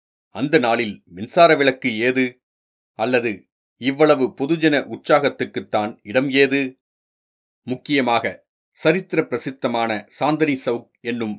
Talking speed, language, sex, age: 90 wpm, Tamil, male, 40-59